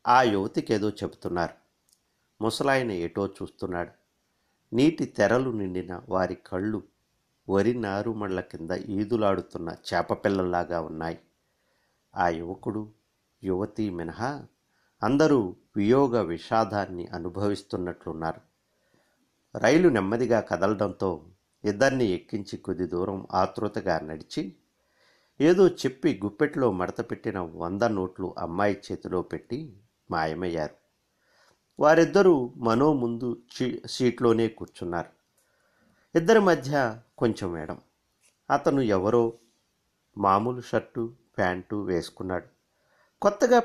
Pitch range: 95-125 Hz